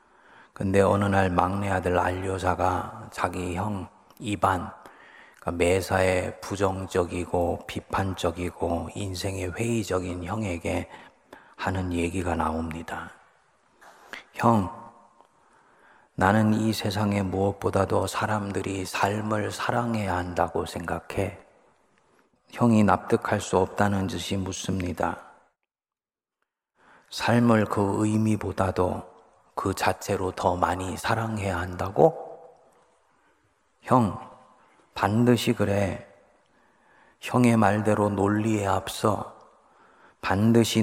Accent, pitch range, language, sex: native, 95-105 Hz, Korean, male